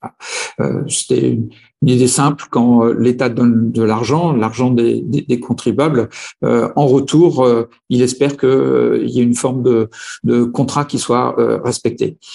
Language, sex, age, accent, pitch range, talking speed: French, male, 50-69, French, 120-145 Hz, 140 wpm